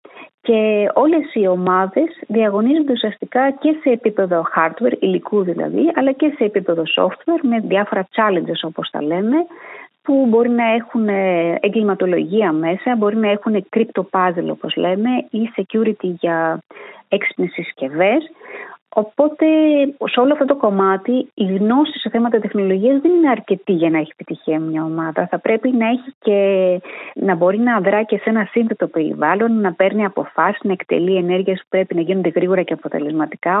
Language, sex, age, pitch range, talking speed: Greek, female, 30-49, 185-255 Hz, 155 wpm